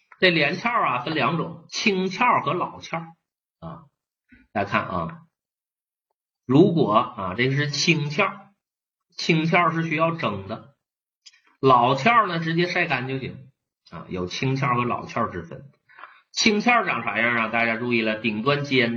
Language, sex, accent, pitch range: Chinese, male, native, 115-165 Hz